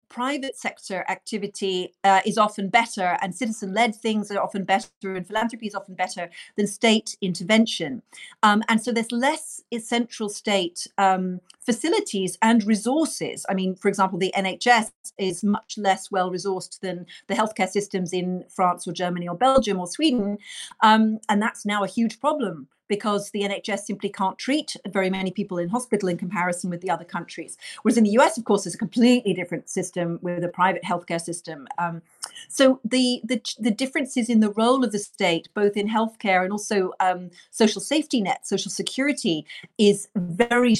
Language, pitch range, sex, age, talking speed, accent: English, 185-230 Hz, female, 40-59, 180 wpm, British